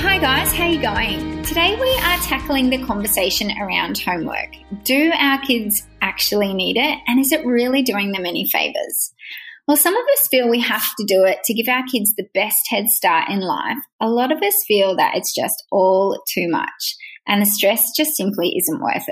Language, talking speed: English, 205 wpm